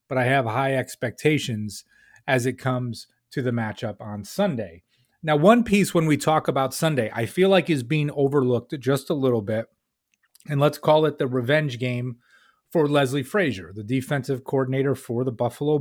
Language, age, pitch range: English, 30-49, 120-150 Hz